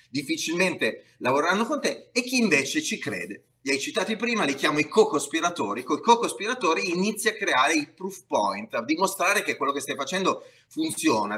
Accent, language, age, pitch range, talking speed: native, Italian, 30-49, 125-200 Hz, 180 wpm